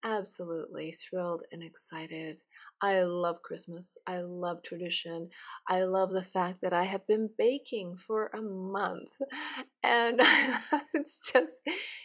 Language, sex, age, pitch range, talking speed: English, female, 30-49, 195-255 Hz, 125 wpm